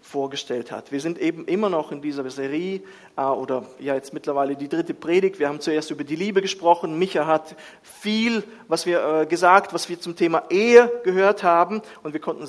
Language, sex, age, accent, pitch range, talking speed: German, male, 40-59, German, 140-200 Hz, 190 wpm